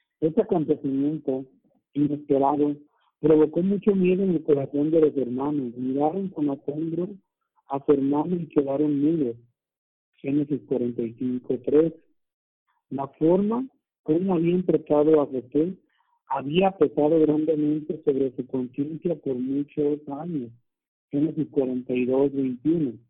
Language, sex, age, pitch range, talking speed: Spanish, male, 50-69, 140-160 Hz, 105 wpm